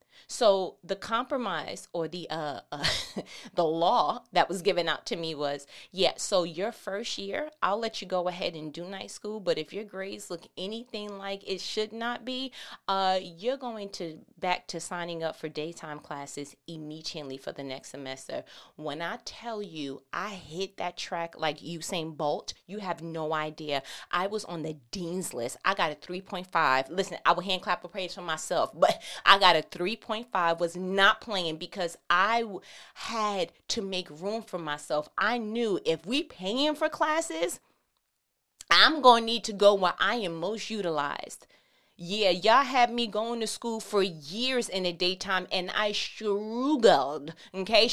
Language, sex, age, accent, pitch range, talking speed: English, female, 30-49, American, 170-220 Hz, 180 wpm